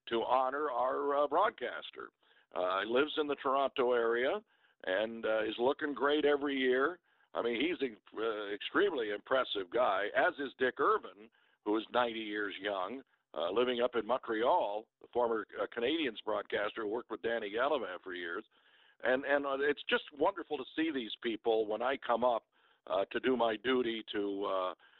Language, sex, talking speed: English, male, 180 wpm